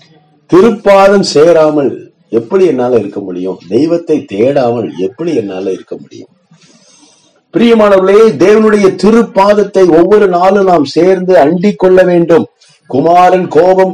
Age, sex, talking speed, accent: 50-69, male, 100 wpm, native